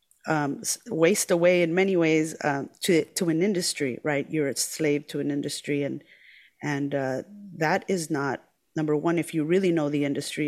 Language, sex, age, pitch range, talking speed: English, female, 30-49, 140-165 Hz, 185 wpm